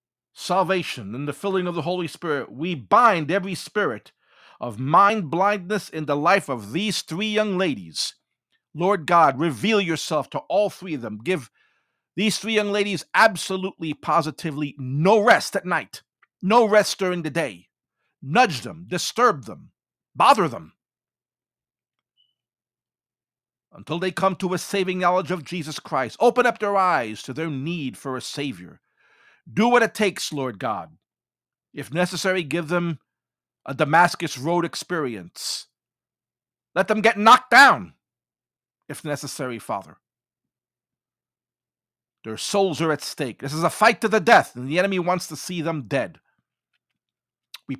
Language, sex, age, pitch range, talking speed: English, male, 50-69, 145-195 Hz, 145 wpm